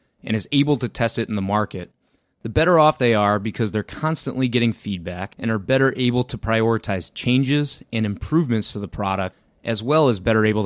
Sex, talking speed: male, 205 wpm